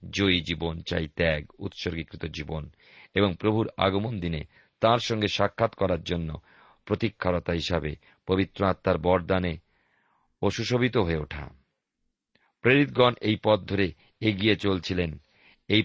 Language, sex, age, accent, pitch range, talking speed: Bengali, male, 50-69, native, 90-105 Hz, 90 wpm